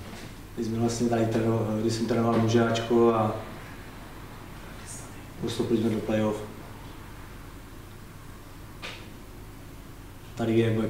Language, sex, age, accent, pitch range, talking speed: Czech, male, 30-49, native, 110-120 Hz, 70 wpm